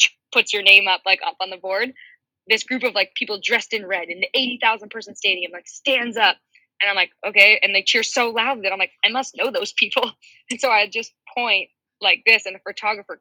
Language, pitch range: English, 180-225 Hz